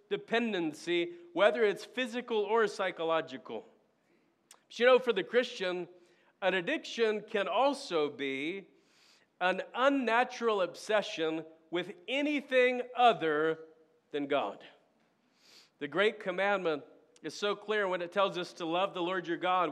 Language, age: English, 40-59